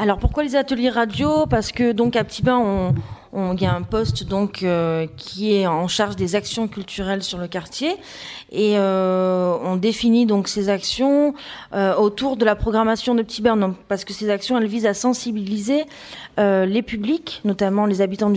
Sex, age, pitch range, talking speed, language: female, 30-49, 190-230 Hz, 195 wpm, French